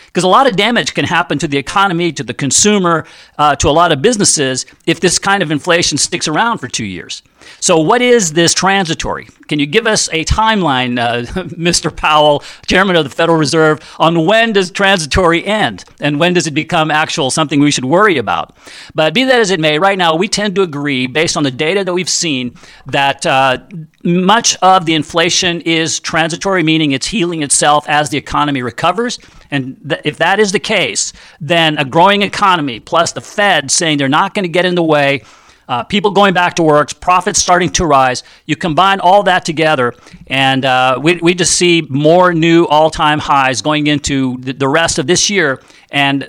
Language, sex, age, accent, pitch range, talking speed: English, male, 50-69, American, 145-185 Hz, 200 wpm